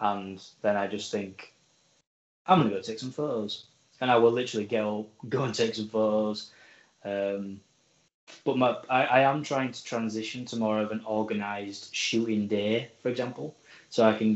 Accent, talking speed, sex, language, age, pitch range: British, 185 wpm, male, English, 10-29, 105-115 Hz